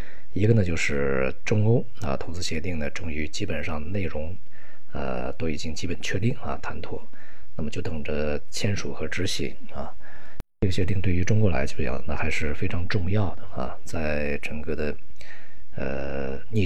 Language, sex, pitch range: Chinese, male, 75-95 Hz